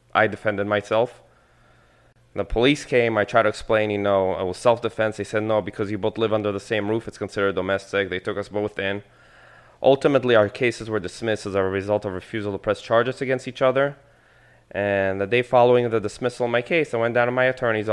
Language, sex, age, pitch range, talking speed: English, male, 20-39, 100-120 Hz, 220 wpm